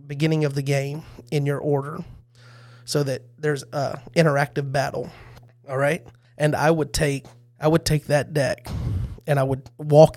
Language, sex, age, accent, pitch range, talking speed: English, male, 30-49, American, 135-155 Hz, 165 wpm